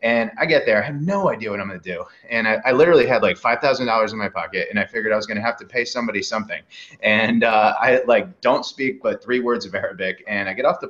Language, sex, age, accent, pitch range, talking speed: English, male, 30-49, American, 110-140 Hz, 280 wpm